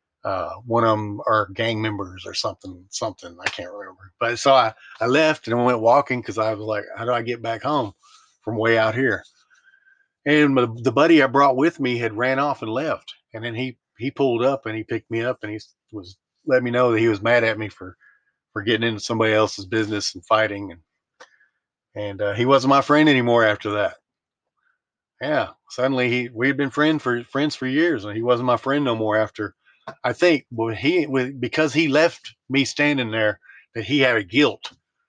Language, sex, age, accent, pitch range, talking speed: English, male, 40-59, American, 110-130 Hz, 210 wpm